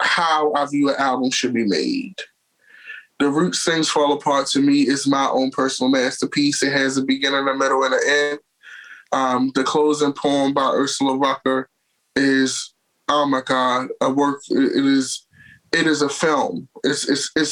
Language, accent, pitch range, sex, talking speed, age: English, American, 135-165 Hz, male, 170 wpm, 20-39